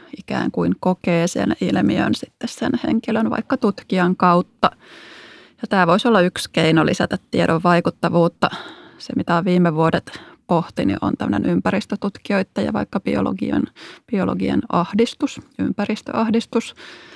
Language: Finnish